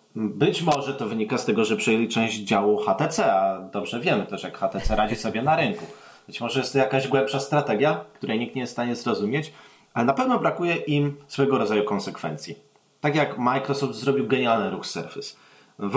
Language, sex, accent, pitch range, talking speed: Polish, male, native, 110-140 Hz, 190 wpm